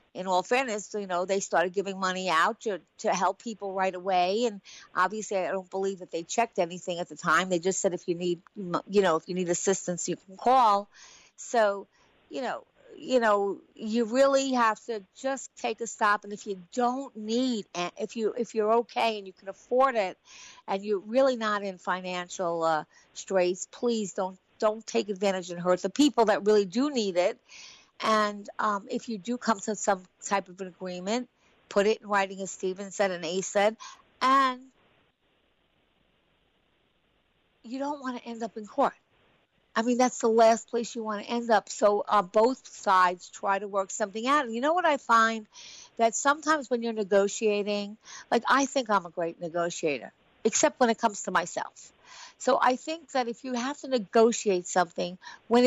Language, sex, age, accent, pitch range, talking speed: English, female, 50-69, American, 190-240 Hz, 195 wpm